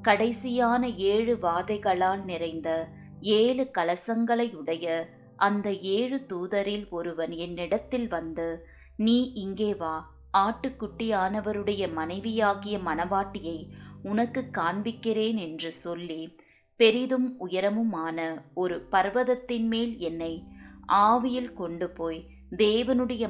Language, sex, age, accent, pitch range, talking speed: Tamil, female, 20-39, native, 170-230 Hz, 85 wpm